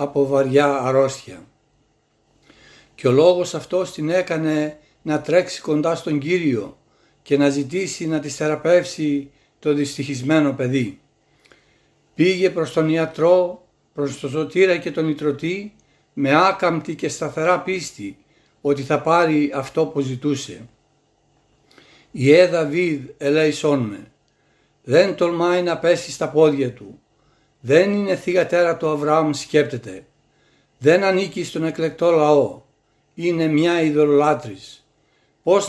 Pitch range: 145-175 Hz